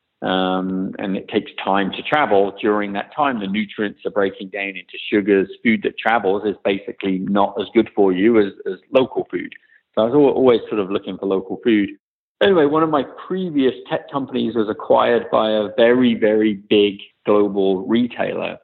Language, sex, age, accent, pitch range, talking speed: English, male, 40-59, British, 105-145 Hz, 185 wpm